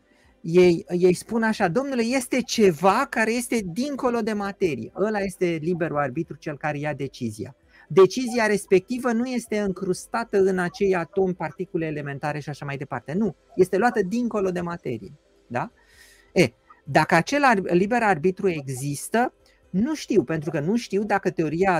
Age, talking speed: 30-49, 145 wpm